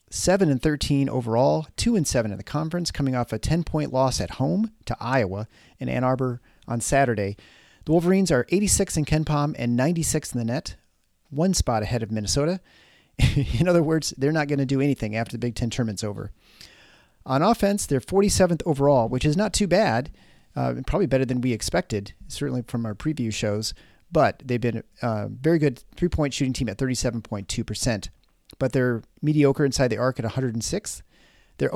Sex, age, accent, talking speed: male, 40-59, American, 180 wpm